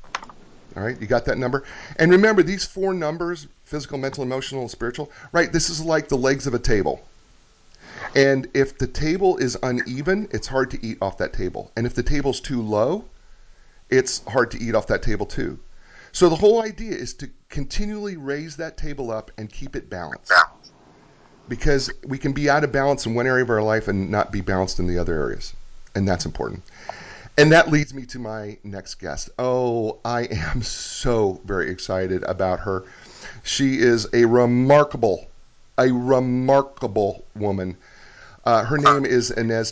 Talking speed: 180 wpm